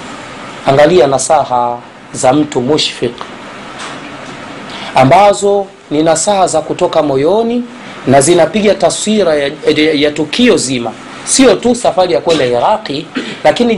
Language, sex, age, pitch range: Swahili, male, 30-49, 135-195 Hz